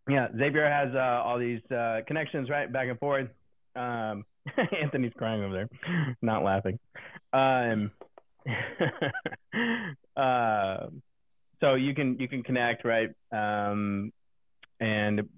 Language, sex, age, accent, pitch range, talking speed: English, male, 30-49, American, 100-125 Hz, 115 wpm